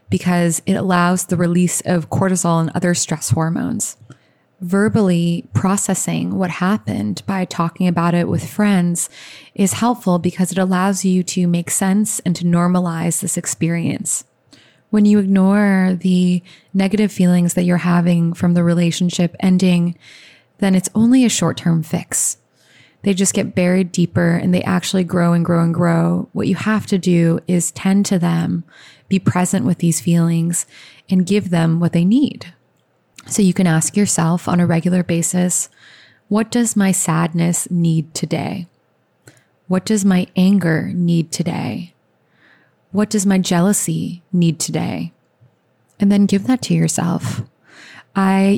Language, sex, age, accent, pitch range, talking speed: English, female, 20-39, American, 170-195 Hz, 150 wpm